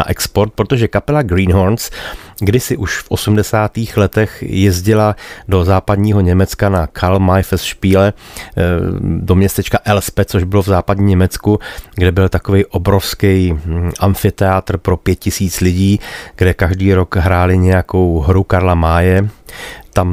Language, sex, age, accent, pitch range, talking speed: Czech, male, 30-49, native, 90-100 Hz, 125 wpm